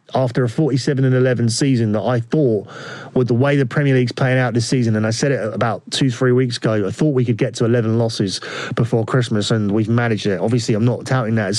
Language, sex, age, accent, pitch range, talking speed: English, male, 30-49, British, 110-130 Hz, 250 wpm